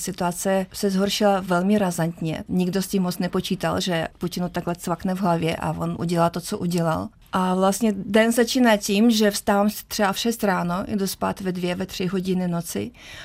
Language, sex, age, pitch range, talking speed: Czech, female, 30-49, 175-195 Hz, 185 wpm